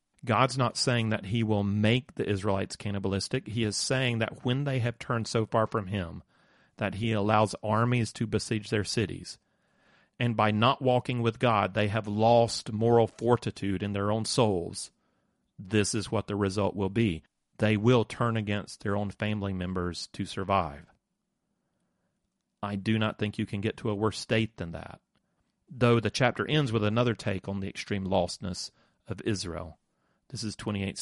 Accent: American